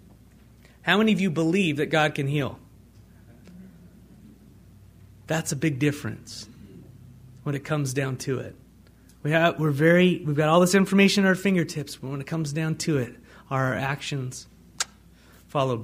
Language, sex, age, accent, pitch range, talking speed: English, male, 30-49, American, 130-165 Hz, 160 wpm